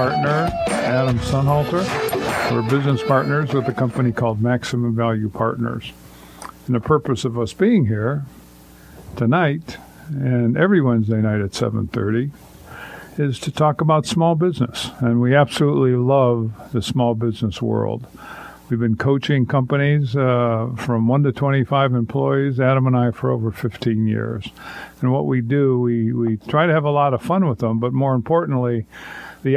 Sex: male